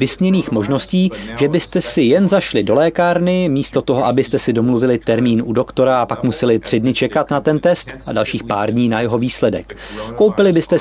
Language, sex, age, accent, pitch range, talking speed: Czech, male, 30-49, native, 115-150 Hz, 195 wpm